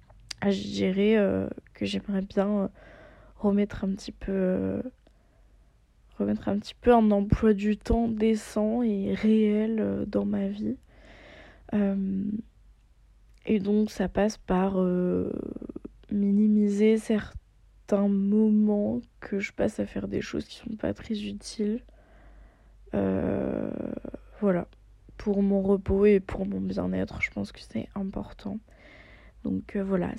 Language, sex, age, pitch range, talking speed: French, female, 20-39, 195-225 Hz, 125 wpm